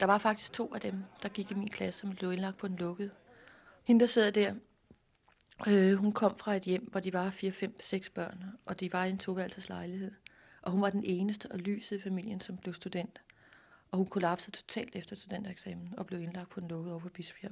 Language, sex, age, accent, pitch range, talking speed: Danish, female, 30-49, native, 175-205 Hz, 230 wpm